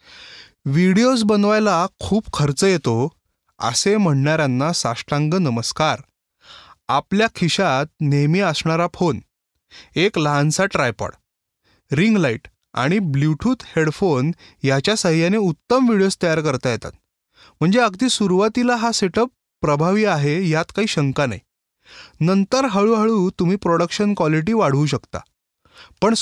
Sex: male